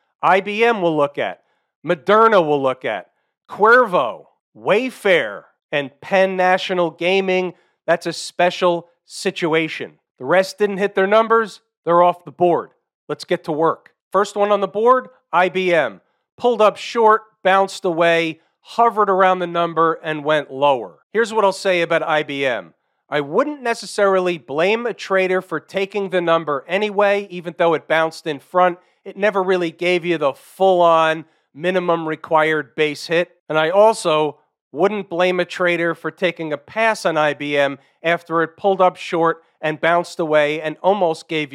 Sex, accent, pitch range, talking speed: male, American, 160-190 Hz, 155 wpm